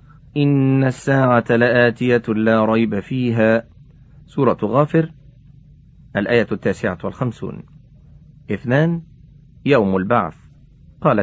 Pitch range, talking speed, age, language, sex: 110-145 Hz, 80 wpm, 40-59, Arabic, male